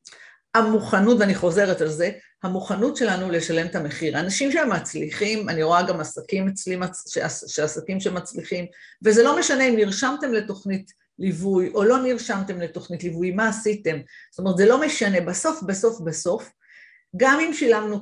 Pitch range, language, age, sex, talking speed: 180-235 Hz, Hebrew, 50-69, female, 150 wpm